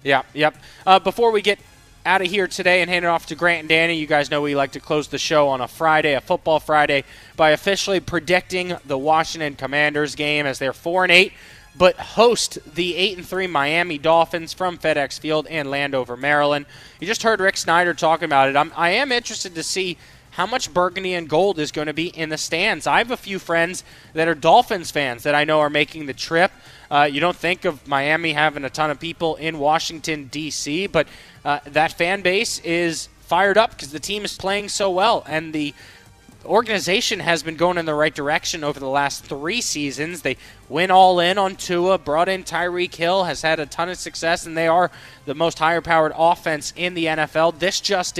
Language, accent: English, American